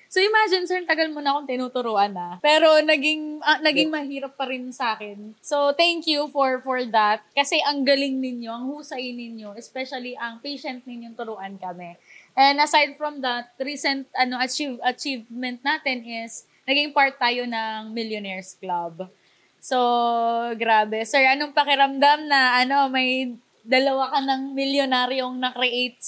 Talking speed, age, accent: 155 wpm, 20-39, native